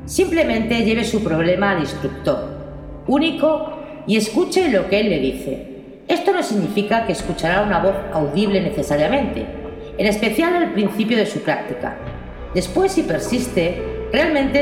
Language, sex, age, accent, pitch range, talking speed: Spanish, female, 40-59, Spanish, 190-275 Hz, 140 wpm